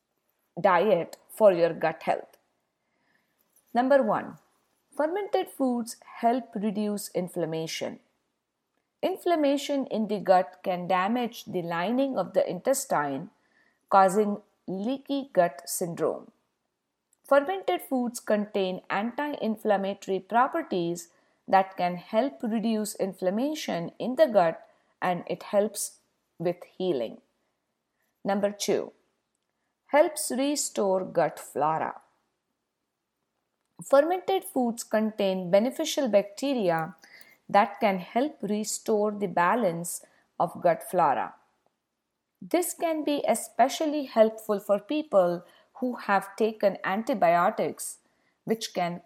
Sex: female